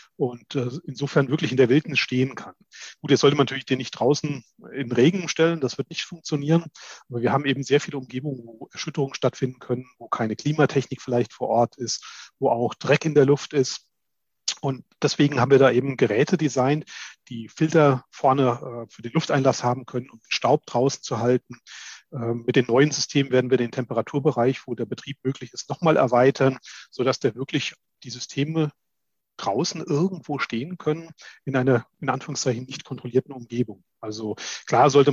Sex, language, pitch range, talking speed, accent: male, German, 125-145 Hz, 180 wpm, German